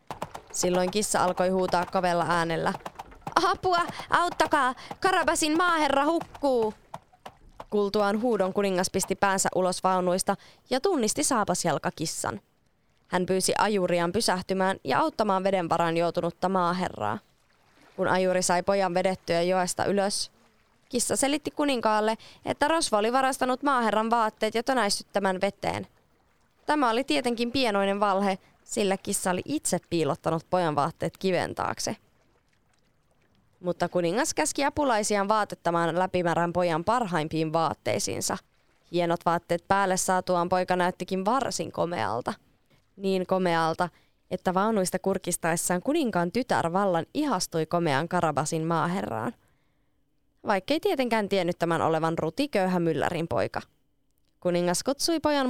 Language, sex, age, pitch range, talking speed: Finnish, female, 20-39, 175-225 Hz, 115 wpm